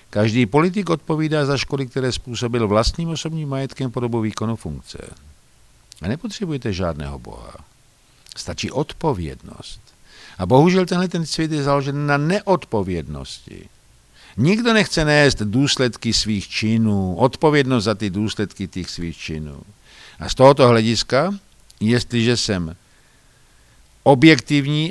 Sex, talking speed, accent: male, 115 wpm, native